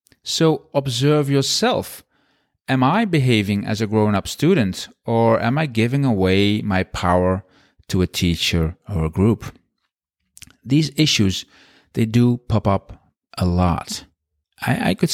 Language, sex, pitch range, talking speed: English, male, 90-125 Hz, 135 wpm